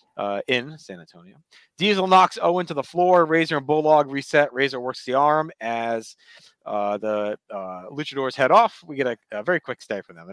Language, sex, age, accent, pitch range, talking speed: English, male, 30-49, American, 120-160 Hz, 205 wpm